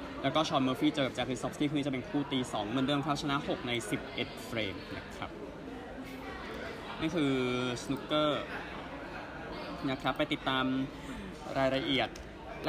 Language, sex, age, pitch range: Thai, male, 20-39, 125-145 Hz